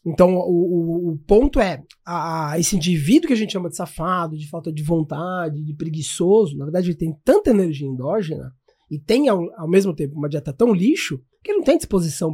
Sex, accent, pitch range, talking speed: male, Brazilian, 165-220 Hz, 210 wpm